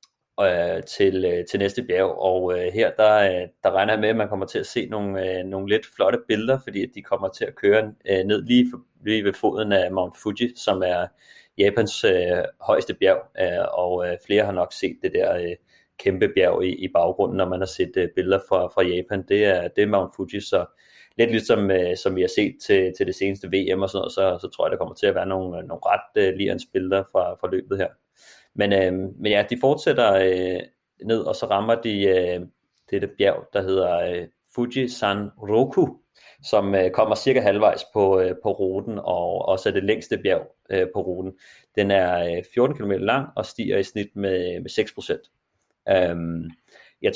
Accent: native